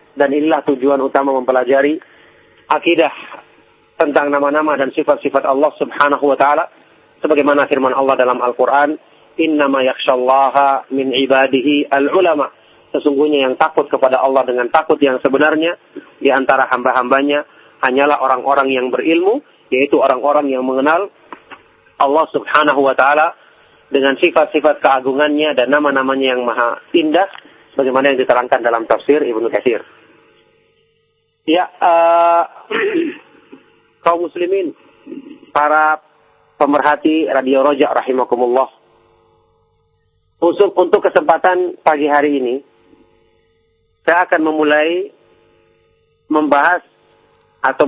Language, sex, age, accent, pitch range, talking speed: English, male, 40-59, Indonesian, 135-160 Hz, 100 wpm